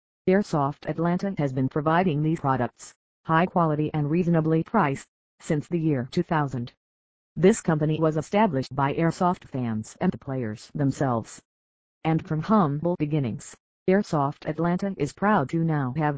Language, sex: English, female